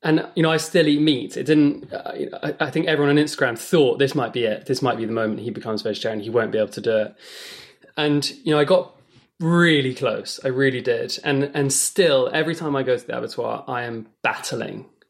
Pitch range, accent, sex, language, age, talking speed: 115-145 Hz, British, male, English, 20-39, 230 wpm